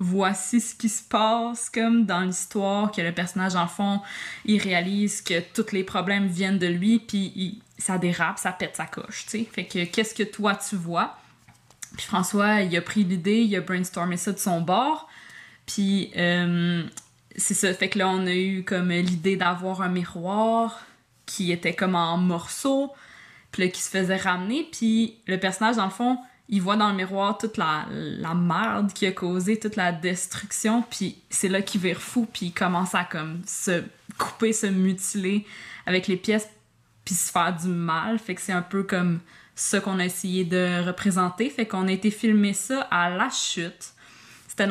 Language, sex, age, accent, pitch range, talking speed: French, female, 20-39, Canadian, 180-215 Hz, 190 wpm